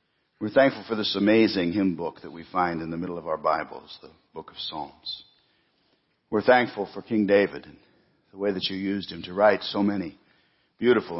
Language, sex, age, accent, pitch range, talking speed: English, male, 60-79, American, 90-105 Hz, 200 wpm